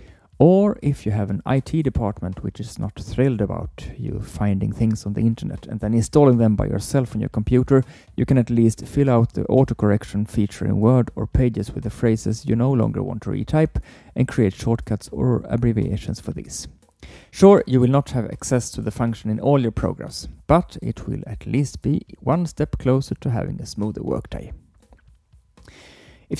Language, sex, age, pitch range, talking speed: English, male, 30-49, 105-135 Hz, 190 wpm